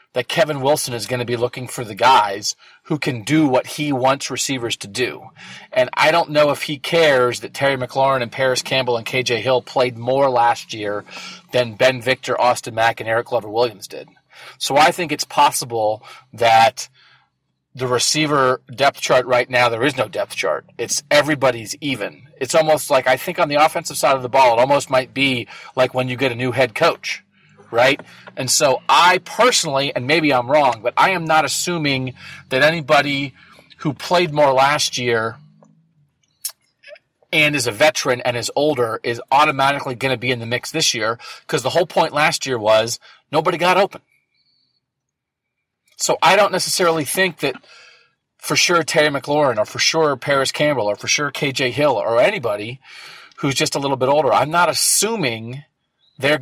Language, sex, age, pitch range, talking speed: English, male, 40-59, 125-155 Hz, 185 wpm